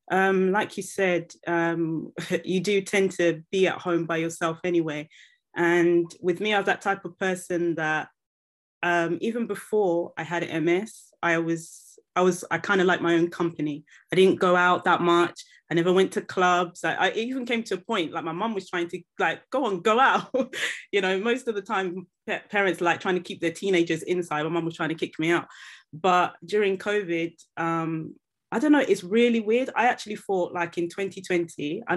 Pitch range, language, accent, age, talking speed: 170-205 Hz, English, British, 20-39, 210 wpm